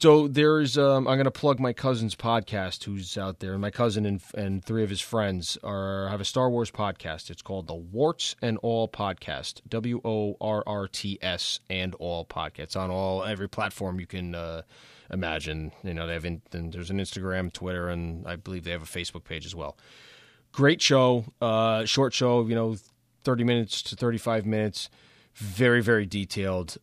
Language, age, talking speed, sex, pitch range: English, 20-39, 195 wpm, male, 95-115 Hz